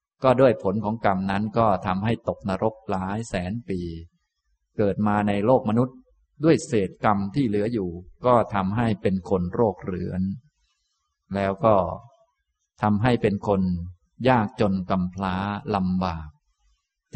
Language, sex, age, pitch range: Thai, male, 20-39, 95-120 Hz